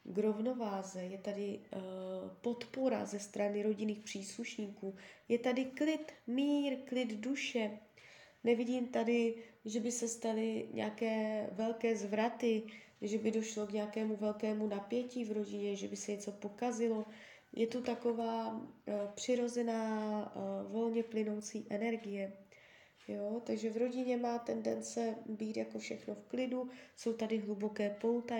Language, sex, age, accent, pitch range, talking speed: Czech, female, 20-39, native, 210-245 Hz, 130 wpm